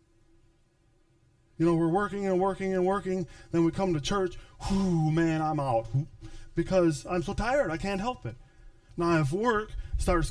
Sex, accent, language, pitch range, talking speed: male, American, English, 115-155 Hz, 170 wpm